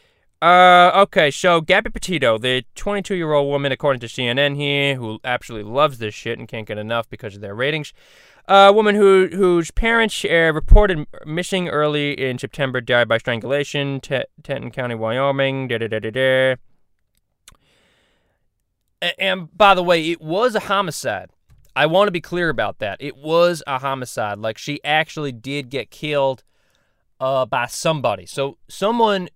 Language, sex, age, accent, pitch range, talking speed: English, male, 20-39, American, 125-175 Hz, 160 wpm